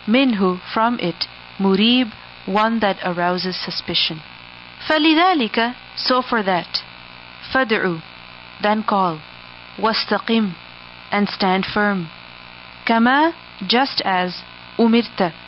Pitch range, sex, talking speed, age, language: 175-230 Hz, female, 90 wpm, 40-59, English